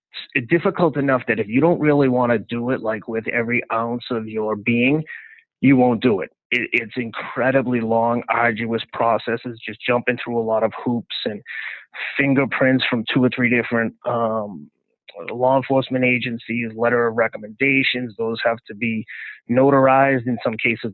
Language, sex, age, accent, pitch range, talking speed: English, male, 30-49, American, 115-135 Hz, 165 wpm